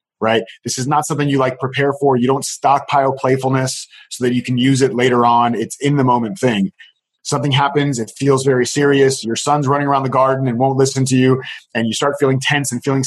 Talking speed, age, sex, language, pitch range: 230 wpm, 30-49, male, English, 125-150 Hz